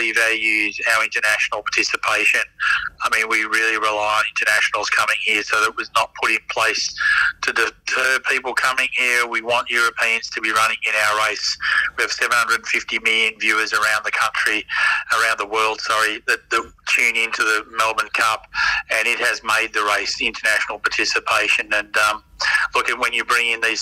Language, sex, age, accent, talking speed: English, male, 30-49, Australian, 180 wpm